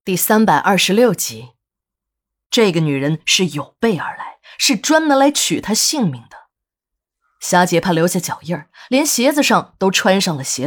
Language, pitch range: Chinese, 155-220 Hz